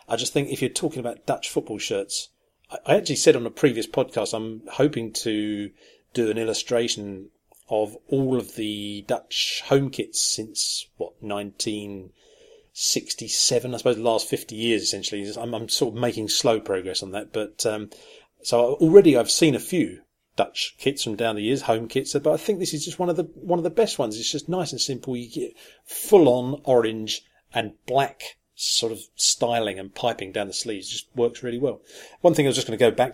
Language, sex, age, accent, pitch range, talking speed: English, male, 40-59, British, 110-145 Hz, 200 wpm